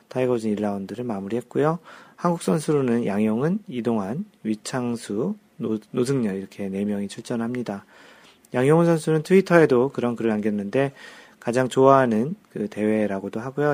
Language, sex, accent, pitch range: Korean, male, native, 110-150 Hz